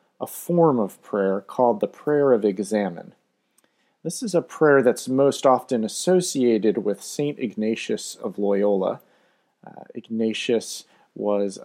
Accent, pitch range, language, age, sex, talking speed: American, 105-140 Hz, English, 30-49, male, 130 wpm